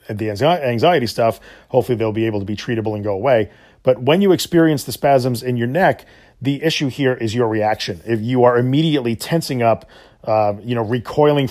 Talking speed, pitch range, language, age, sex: 200 wpm, 110-135 Hz, English, 40-59, male